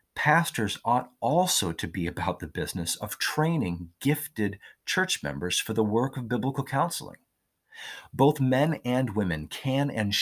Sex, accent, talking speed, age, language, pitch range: male, American, 145 wpm, 40-59, English, 95-130 Hz